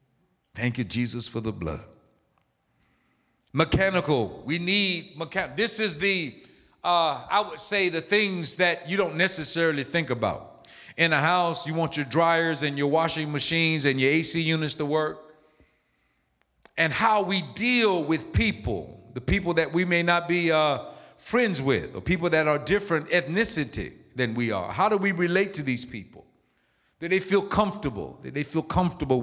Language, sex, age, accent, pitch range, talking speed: English, male, 50-69, American, 130-175 Hz, 170 wpm